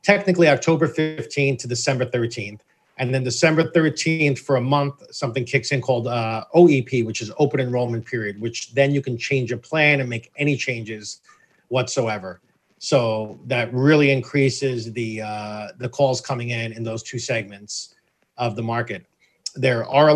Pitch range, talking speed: 120-140 Hz, 165 wpm